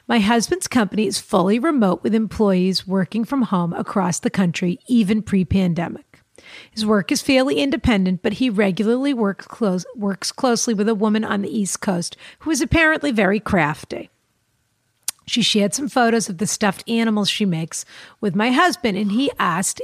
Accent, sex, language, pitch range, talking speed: American, female, English, 190-240 Hz, 170 wpm